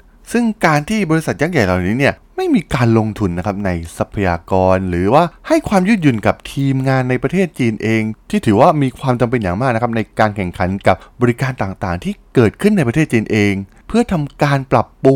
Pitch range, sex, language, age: 100-155 Hz, male, Thai, 20-39